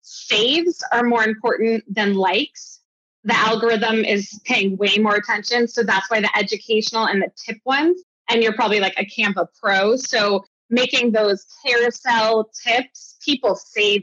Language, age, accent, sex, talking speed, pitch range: English, 20-39, American, female, 160 wpm, 205-255 Hz